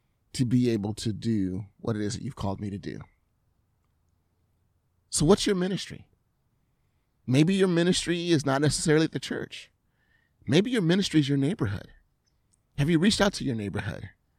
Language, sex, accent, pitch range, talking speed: English, male, American, 105-165 Hz, 165 wpm